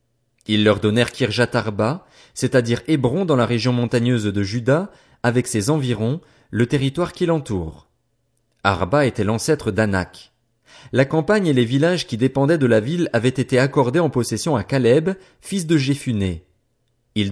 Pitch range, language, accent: 115-150 Hz, French, French